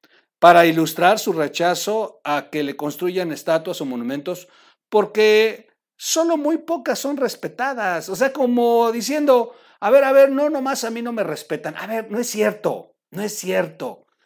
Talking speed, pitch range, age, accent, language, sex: 170 wpm, 155-225 Hz, 50-69, Mexican, Spanish, male